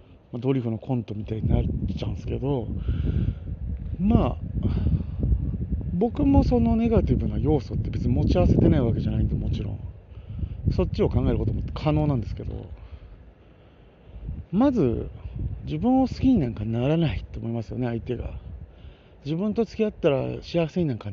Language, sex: Japanese, male